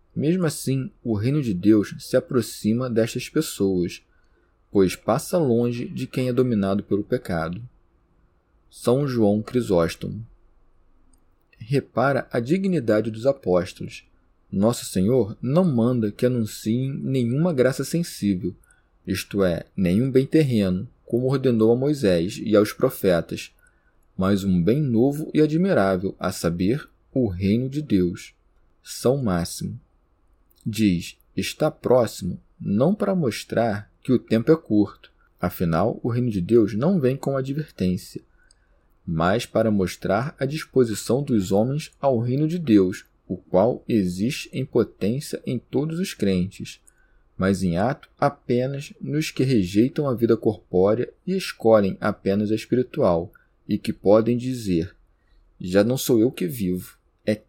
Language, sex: Portuguese, male